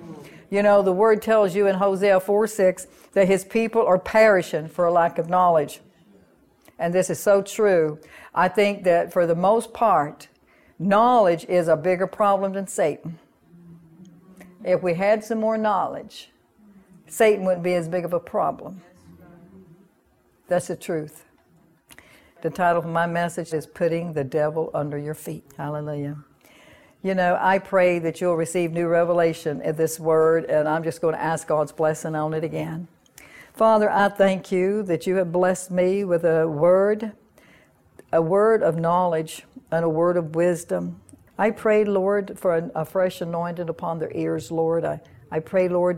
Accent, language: American, English